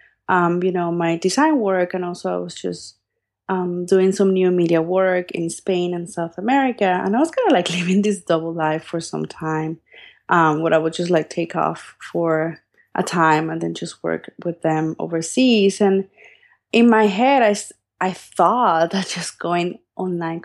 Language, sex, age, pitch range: English, female, 20-39, 175-225 Hz